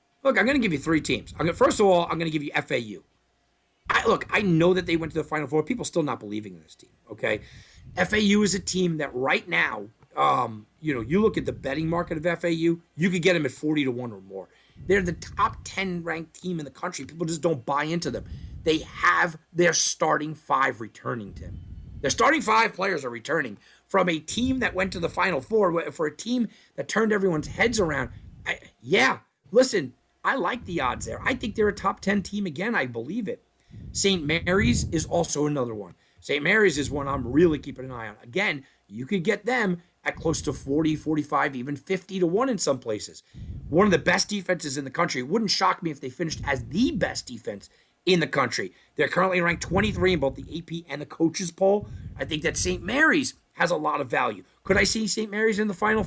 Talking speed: 230 wpm